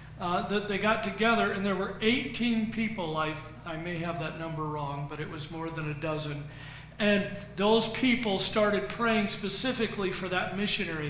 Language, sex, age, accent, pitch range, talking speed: English, male, 50-69, American, 170-215 Hz, 180 wpm